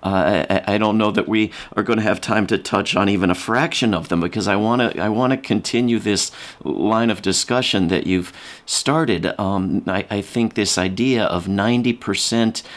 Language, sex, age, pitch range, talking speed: English, male, 40-59, 95-115 Hz, 205 wpm